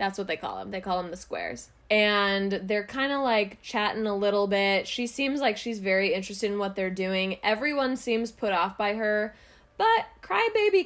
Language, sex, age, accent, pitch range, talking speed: English, female, 20-39, American, 200-250 Hz, 205 wpm